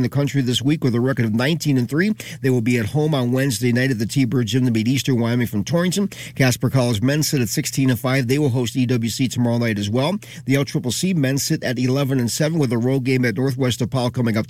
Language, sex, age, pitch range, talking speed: English, male, 40-59, 125-155 Hz, 245 wpm